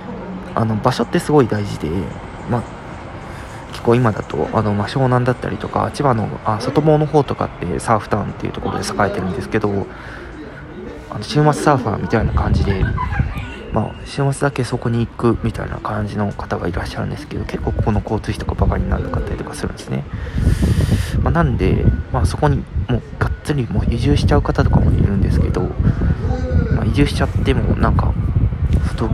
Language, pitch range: Japanese, 100-120 Hz